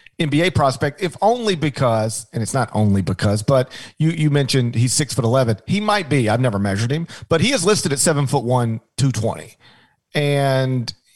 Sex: male